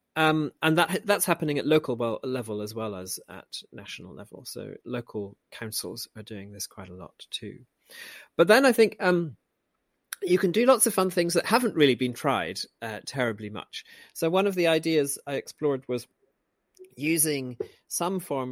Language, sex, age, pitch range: English, male, 40-59, 120-165 Hz